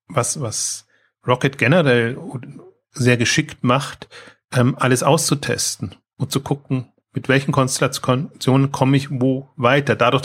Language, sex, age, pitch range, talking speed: German, male, 30-49, 115-135 Hz, 115 wpm